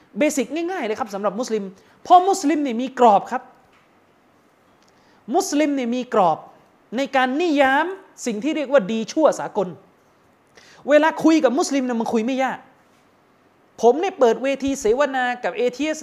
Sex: male